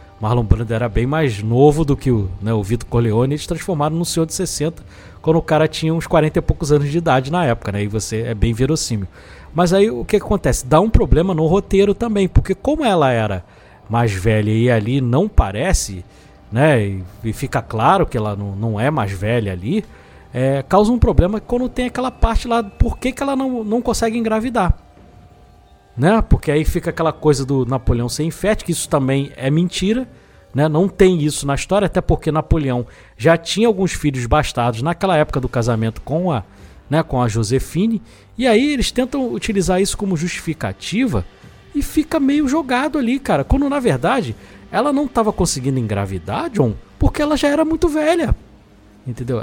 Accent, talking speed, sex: Brazilian, 195 wpm, male